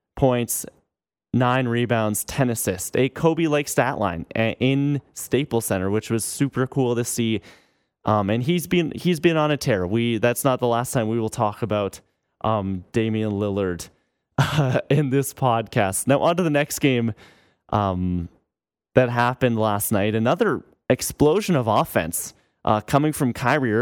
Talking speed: 160 wpm